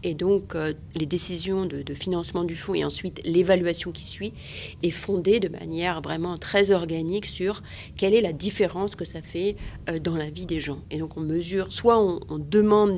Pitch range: 160-195 Hz